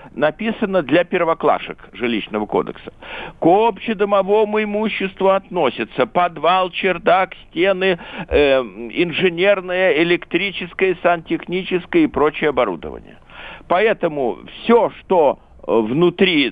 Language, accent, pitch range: Russian, native, 145-200 Hz